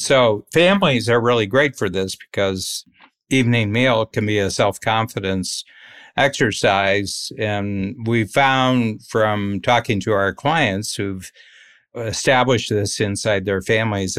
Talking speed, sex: 125 wpm, male